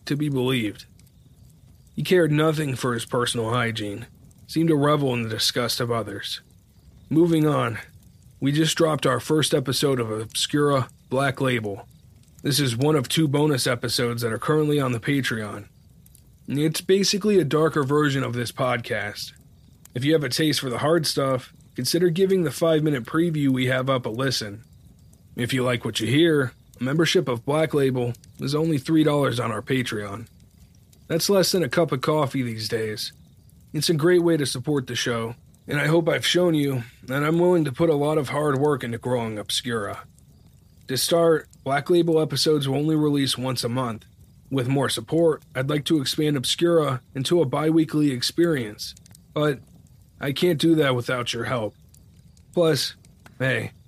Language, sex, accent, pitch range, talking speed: English, male, American, 120-155 Hz, 175 wpm